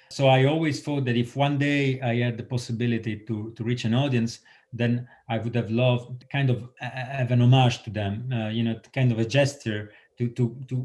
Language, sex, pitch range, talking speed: English, male, 110-130 Hz, 220 wpm